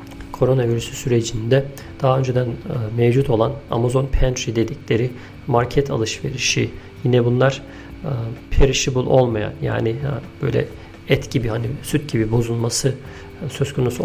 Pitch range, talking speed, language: 115-140 Hz, 130 wpm, Turkish